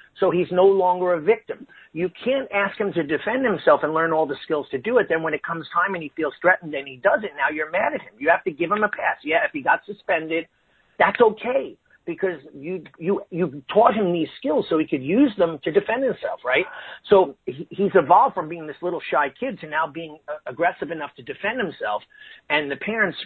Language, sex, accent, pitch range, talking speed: English, male, American, 155-200 Hz, 230 wpm